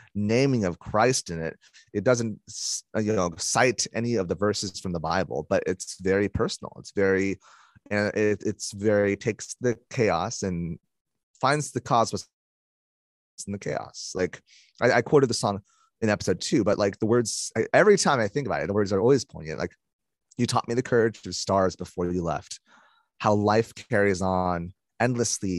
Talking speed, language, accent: 175 wpm, English, American